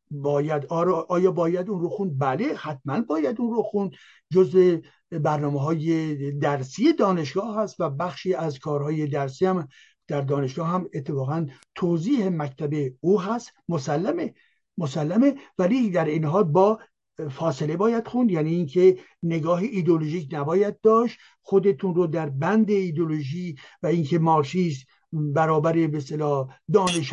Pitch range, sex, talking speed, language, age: 155-210 Hz, male, 130 wpm, Persian, 60-79